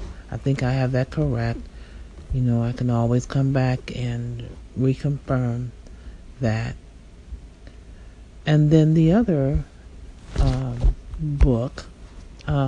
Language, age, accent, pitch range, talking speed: English, 40-59, American, 85-135 Hz, 110 wpm